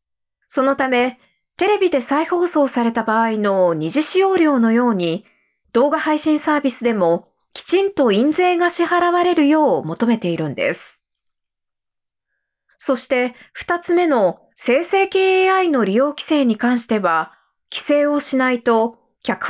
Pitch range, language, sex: 230-320 Hz, Japanese, female